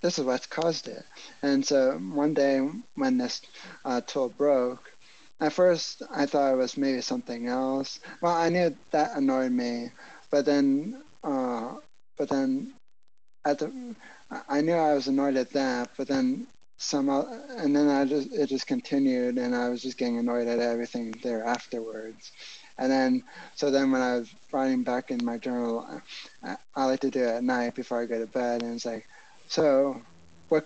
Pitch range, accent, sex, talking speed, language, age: 125-160 Hz, American, male, 185 wpm, English, 20-39